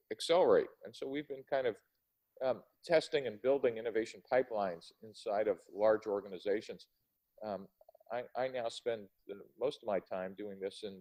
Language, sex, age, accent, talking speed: English, male, 40-59, American, 160 wpm